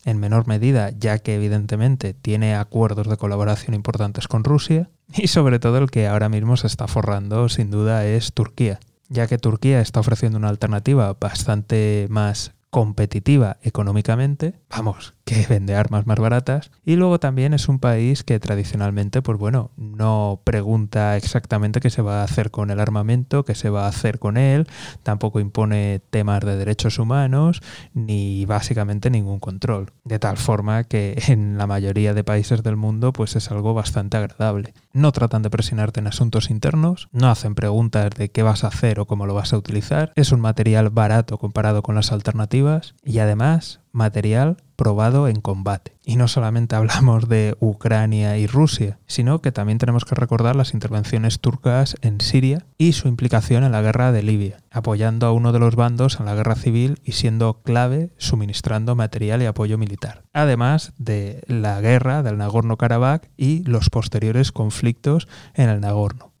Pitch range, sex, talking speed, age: 105-125 Hz, male, 175 wpm, 20-39